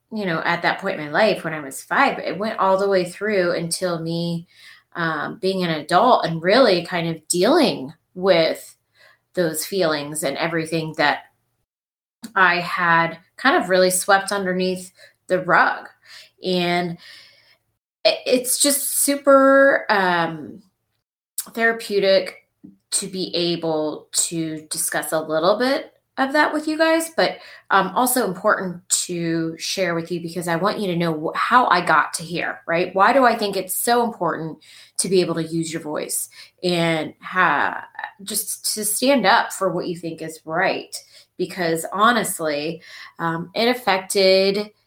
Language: English